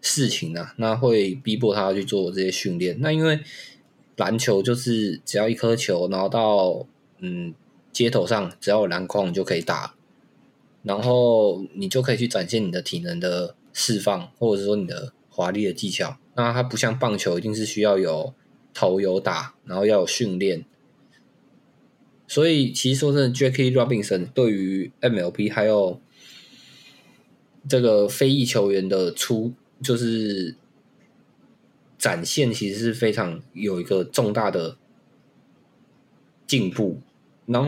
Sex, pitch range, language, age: male, 100-130 Hz, Chinese, 20-39